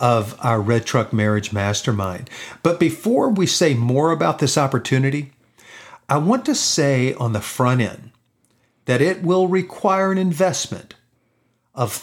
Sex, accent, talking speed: male, American, 145 wpm